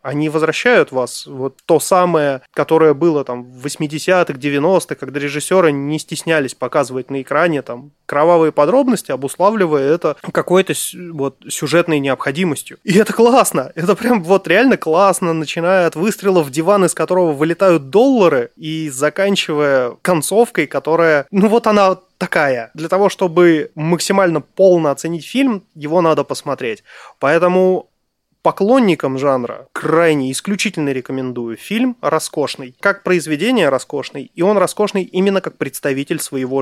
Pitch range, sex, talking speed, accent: 140-185 Hz, male, 135 wpm, native